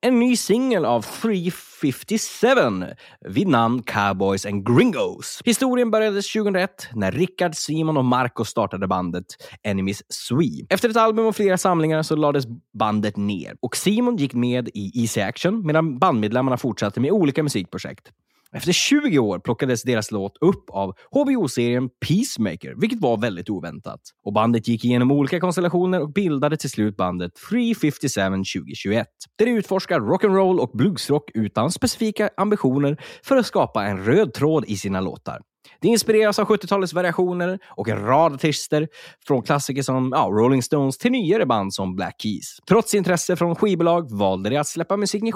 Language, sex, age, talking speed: Swedish, male, 20-39, 160 wpm